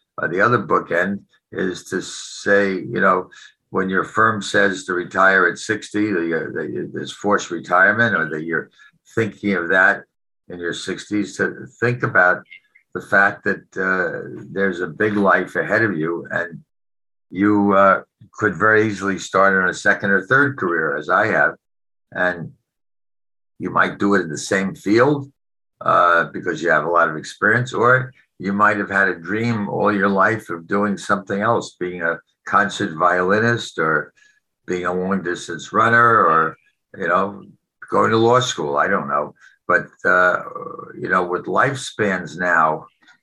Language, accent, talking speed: English, American, 165 wpm